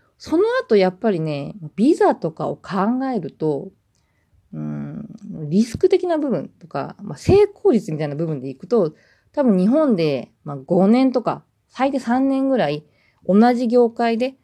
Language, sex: Japanese, female